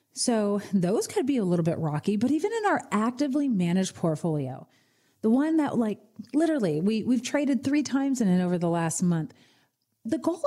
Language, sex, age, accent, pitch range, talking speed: English, female, 30-49, American, 180-250 Hz, 190 wpm